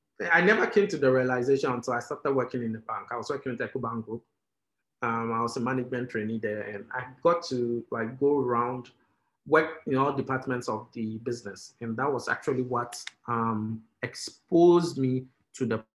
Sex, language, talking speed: male, English, 180 wpm